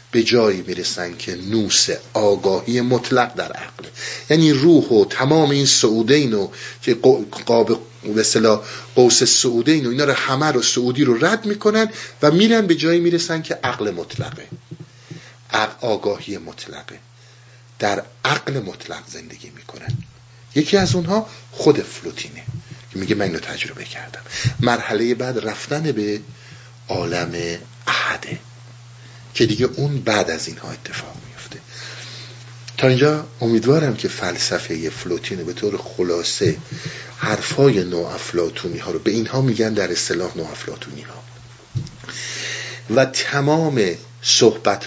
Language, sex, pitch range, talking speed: Persian, male, 115-140 Hz, 125 wpm